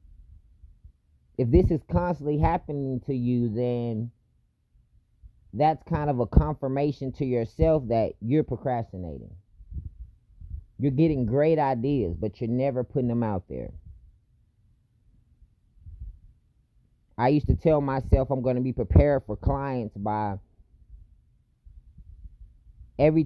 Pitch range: 95-130 Hz